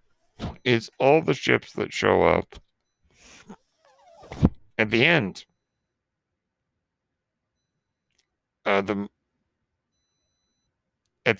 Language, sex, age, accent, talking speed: English, male, 60-79, American, 70 wpm